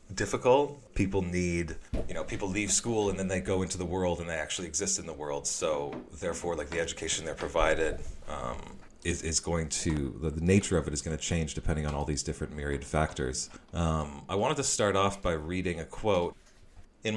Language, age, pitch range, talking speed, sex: English, 30-49, 80-95 Hz, 215 wpm, male